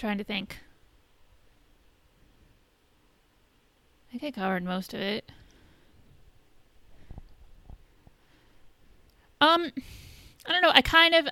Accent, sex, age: American, female, 30-49